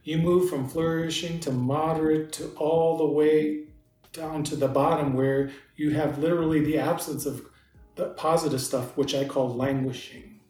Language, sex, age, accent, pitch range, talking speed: English, male, 40-59, American, 140-170 Hz, 160 wpm